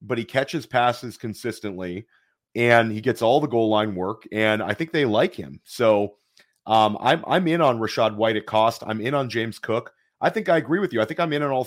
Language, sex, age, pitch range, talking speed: English, male, 30-49, 105-125 Hz, 235 wpm